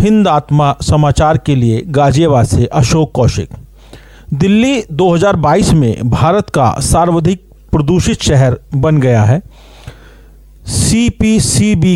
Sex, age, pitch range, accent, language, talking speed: male, 50-69, 135-185 Hz, native, Hindi, 105 wpm